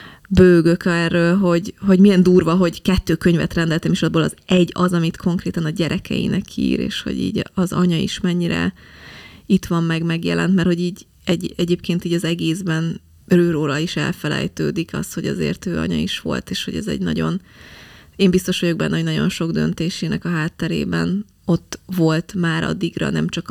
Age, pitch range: 20-39, 165-185 Hz